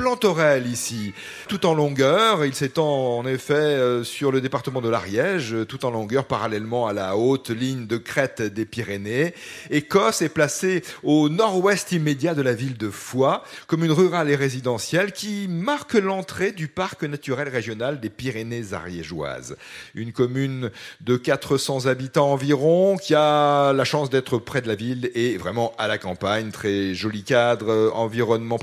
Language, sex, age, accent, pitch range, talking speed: French, male, 40-59, French, 120-160 Hz, 155 wpm